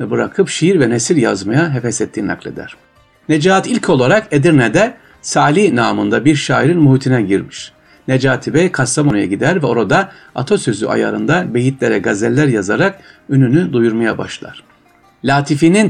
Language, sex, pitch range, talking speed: Turkish, male, 115-165 Hz, 125 wpm